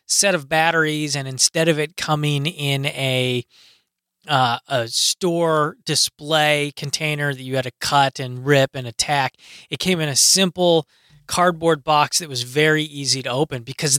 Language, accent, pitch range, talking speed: English, American, 145-180 Hz, 165 wpm